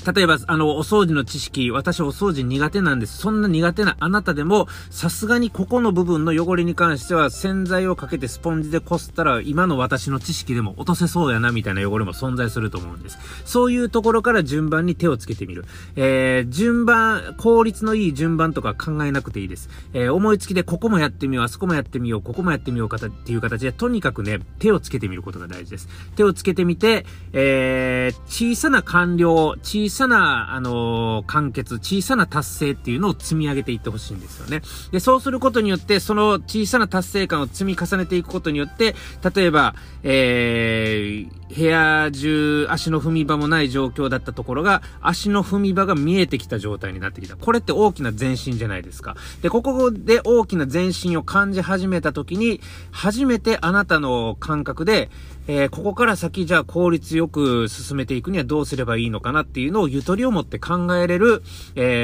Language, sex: Japanese, male